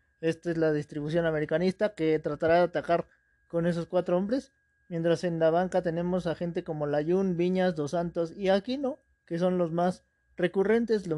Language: Spanish